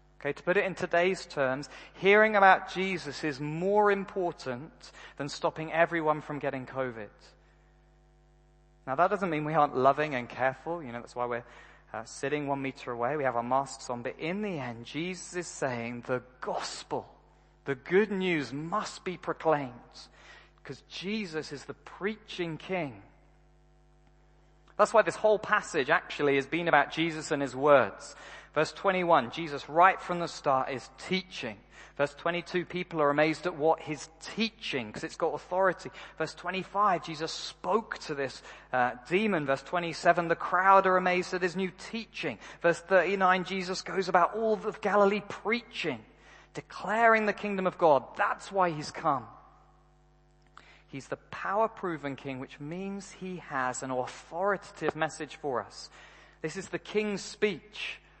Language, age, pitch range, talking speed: English, 30-49, 140-190 Hz, 160 wpm